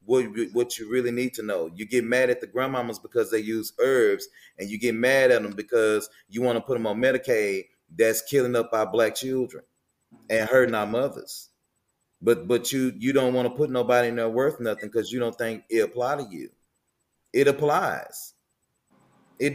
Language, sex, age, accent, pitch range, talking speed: English, male, 30-49, American, 105-130 Hz, 200 wpm